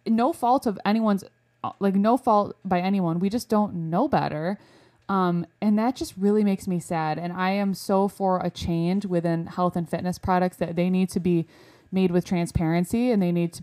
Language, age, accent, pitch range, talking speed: English, 20-39, American, 165-195 Hz, 205 wpm